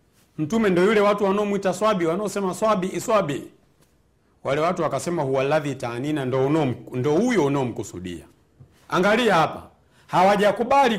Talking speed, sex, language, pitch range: 120 wpm, male, Swahili, 120-200 Hz